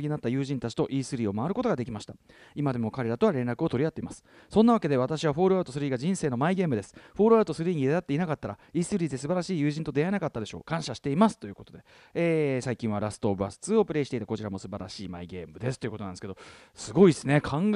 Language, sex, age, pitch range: Japanese, male, 40-59, 115-195 Hz